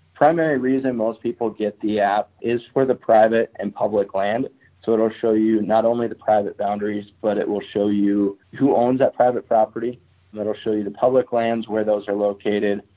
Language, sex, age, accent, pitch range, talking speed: English, male, 20-39, American, 105-115 Hz, 210 wpm